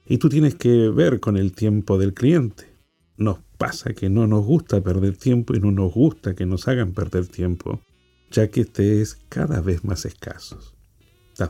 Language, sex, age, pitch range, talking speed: Spanish, male, 50-69, 95-125 Hz, 190 wpm